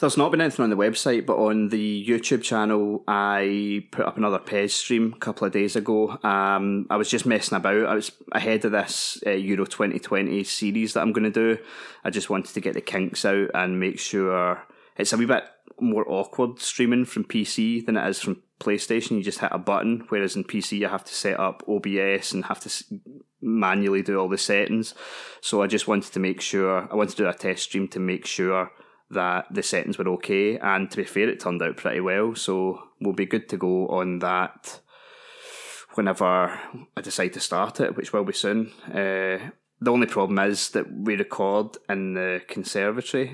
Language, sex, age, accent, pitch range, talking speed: English, male, 20-39, British, 95-110 Hz, 210 wpm